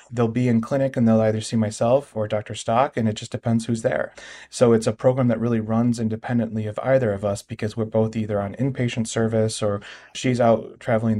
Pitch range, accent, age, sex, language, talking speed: 105-120 Hz, American, 30-49, male, English, 220 wpm